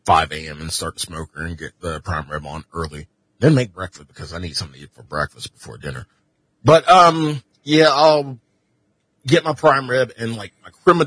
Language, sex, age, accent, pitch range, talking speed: English, male, 30-49, American, 95-155 Hz, 205 wpm